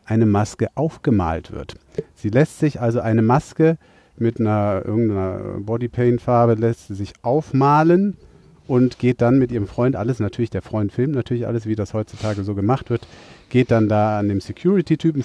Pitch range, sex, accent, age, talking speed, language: 105-125 Hz, male, German, 40-59, 170 wpm, German